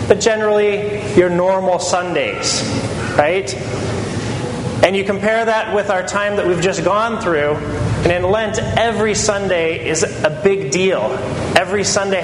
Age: 30-49